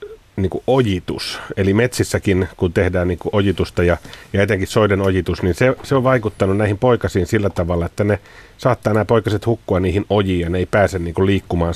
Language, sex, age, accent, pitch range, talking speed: Finnish, male, 30-49, native, 90-105 Hz, 190 wpm